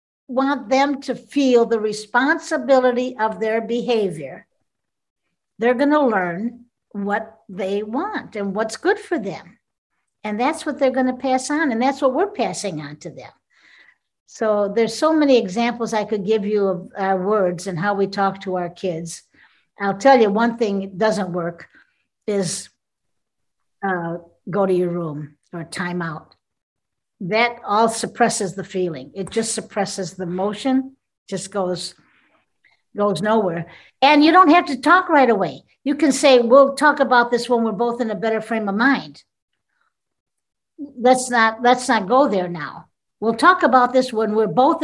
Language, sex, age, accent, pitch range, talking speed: English, female, 60-79, American, 195-265 Hz, 165 wpm